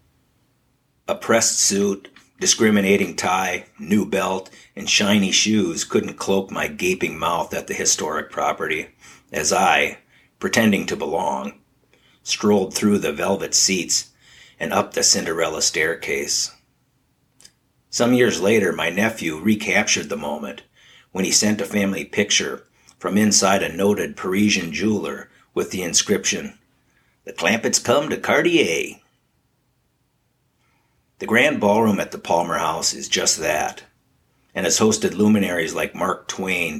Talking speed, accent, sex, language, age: 130 wpm, American, male, English, 50-69